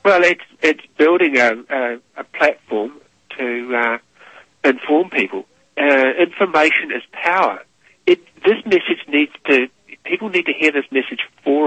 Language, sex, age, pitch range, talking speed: English, male, 60-79, 130-155 Hz, 145 wpm